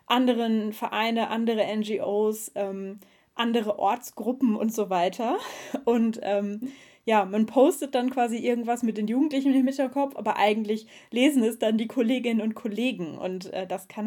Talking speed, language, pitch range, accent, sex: 155 wpm, German, 210-255 Hz, German, female